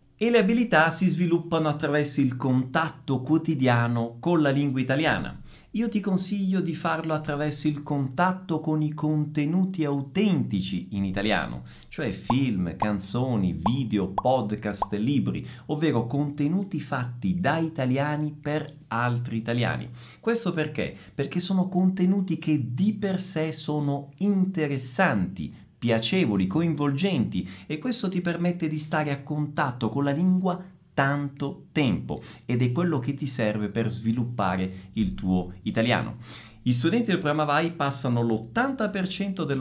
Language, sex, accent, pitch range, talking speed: Italian, male, native, 120-160 Hz, 130 wpm